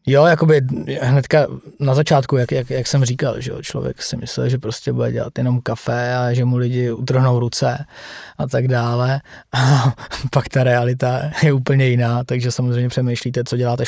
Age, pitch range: 20-39, 120-135 Hz